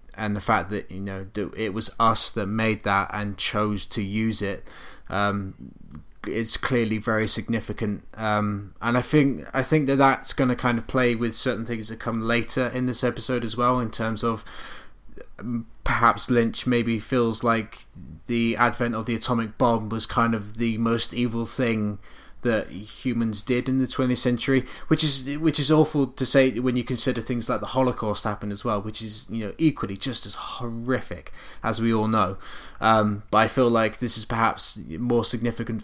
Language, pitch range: English, 105-125 Hz